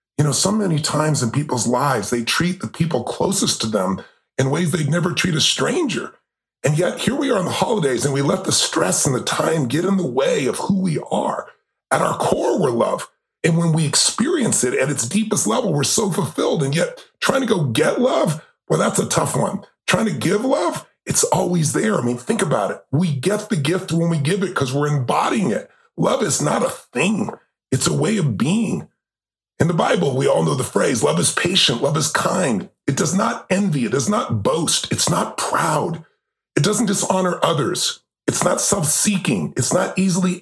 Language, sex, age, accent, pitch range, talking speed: English, female, 40-59, American, 150-200 Hz, 215 wpm